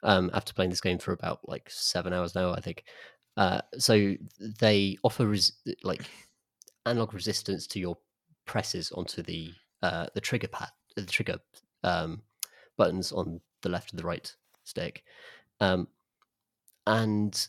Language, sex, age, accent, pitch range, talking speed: English, male, 30-49, British, 95-110 Hz, 150 wpm